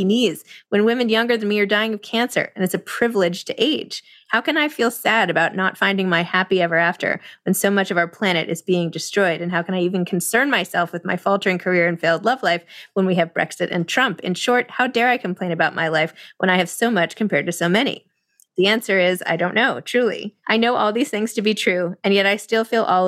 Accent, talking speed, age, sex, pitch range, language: American, 250 wpm, 20-39, female, 175-205 Hz, English